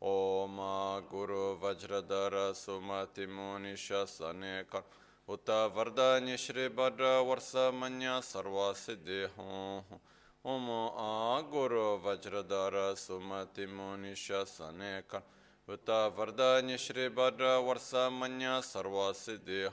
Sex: male